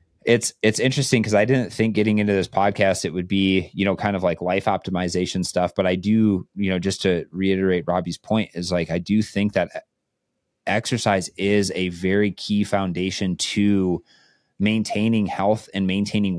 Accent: American